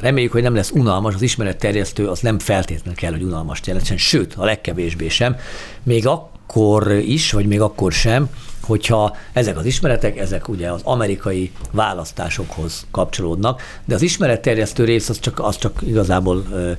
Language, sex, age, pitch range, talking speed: Hungarian, male, 50-69, 95-125 Hz, 155 wpm